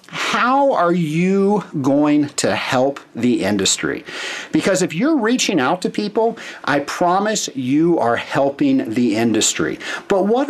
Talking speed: 135 wpm